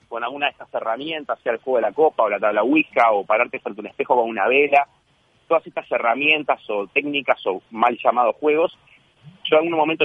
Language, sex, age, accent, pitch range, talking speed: Spanish, male, 30-49, Argentinian, 130-175 Hz, 220 wpm